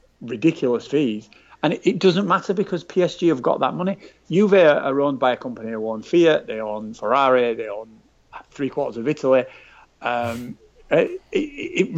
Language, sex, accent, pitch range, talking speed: English, male, British, 130-185 Hz, 175 wpm